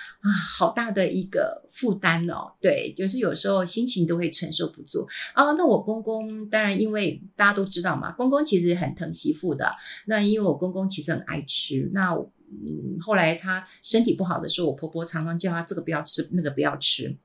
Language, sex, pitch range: Chinese, female, 165-220 Hz